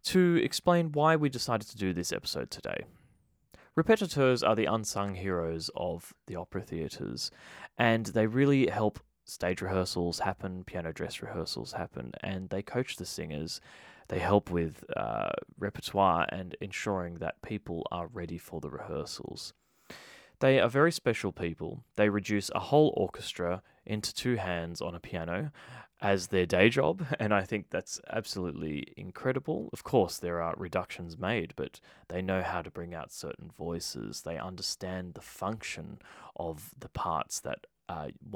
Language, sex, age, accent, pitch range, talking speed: English, male, 20-39, Australian, 85-120 Hz, 155 wpm